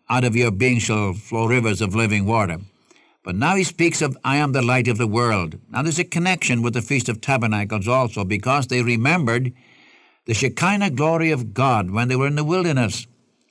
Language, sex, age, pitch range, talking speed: English, male, 60-79, 115-150 Hz, 205 wpm